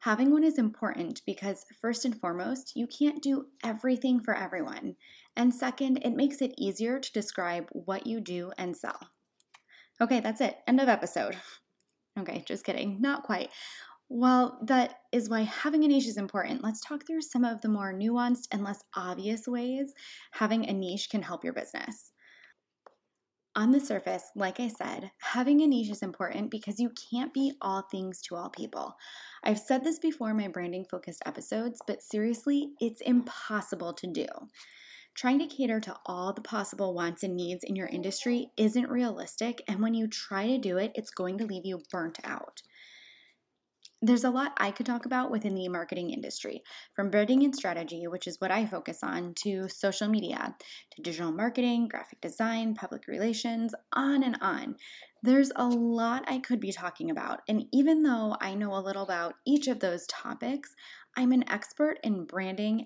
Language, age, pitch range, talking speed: English, 20-39, 195-250 Hz, 180 wpm